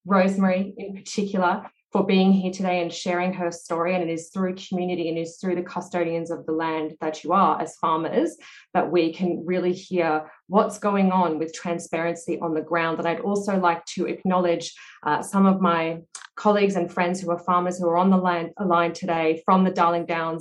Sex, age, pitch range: female, 20-39, 170-195 Hz